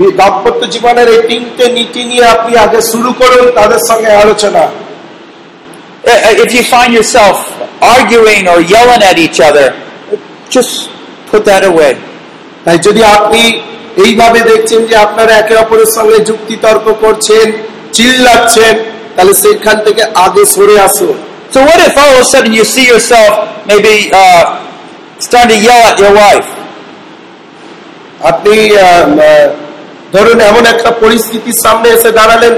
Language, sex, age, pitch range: Bengali, male, 50-69, 215-240 Hz